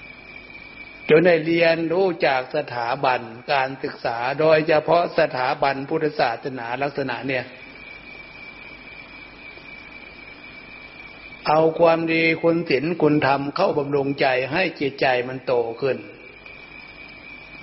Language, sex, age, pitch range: Thai, male, 60-79, 140-165 Hz